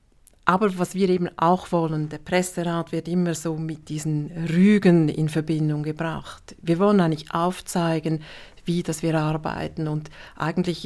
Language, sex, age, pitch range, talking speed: German, female, 40-59, 160-185 Hz, 150 wpm